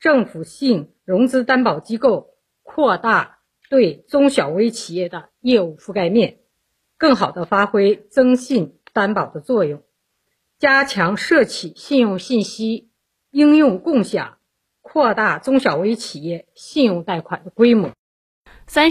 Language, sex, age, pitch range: Chinese, female, 50-69, 175-235 Hz